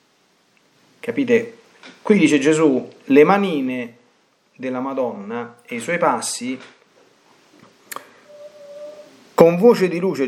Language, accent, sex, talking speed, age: Italian, native, male, 95 wpm, 40-59